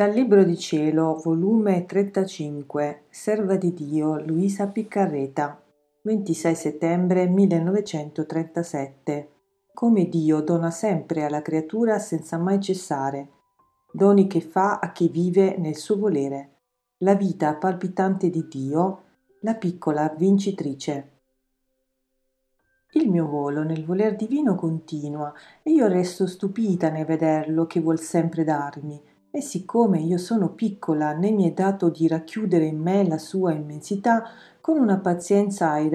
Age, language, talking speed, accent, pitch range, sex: 40-59, Italian, 130 wpm, native, 160-200 Hz, female